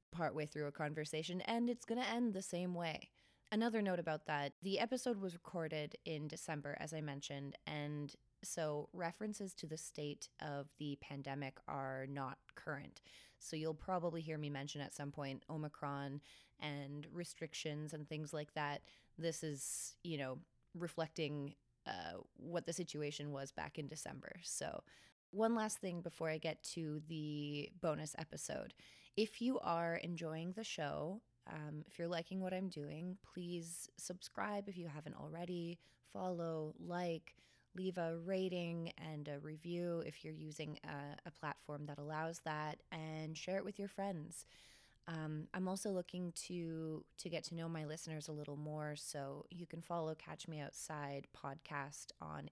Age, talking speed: 20-39, 160 wpm